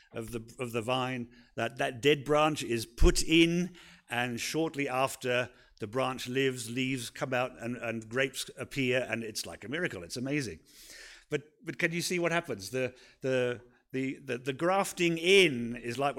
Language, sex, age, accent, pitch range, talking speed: English, male, 50-69, British, 125-160 Hz, 180 wpm